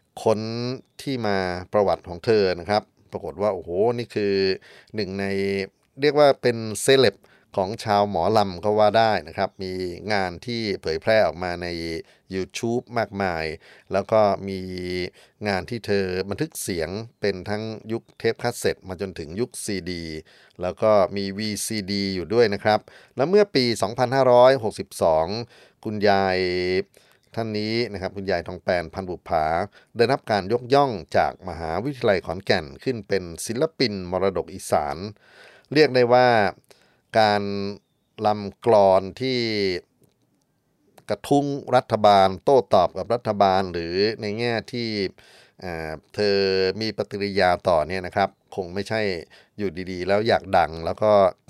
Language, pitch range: Thai, 95-115 Hz